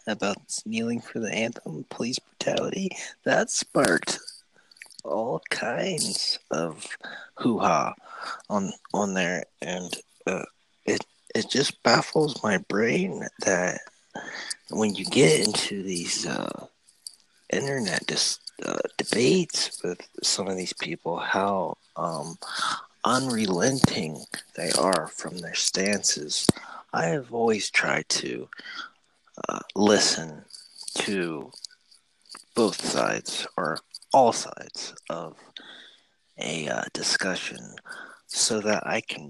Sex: male